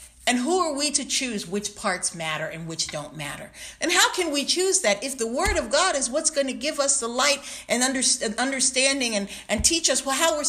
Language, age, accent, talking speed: English, 50-69, American, 230 wpm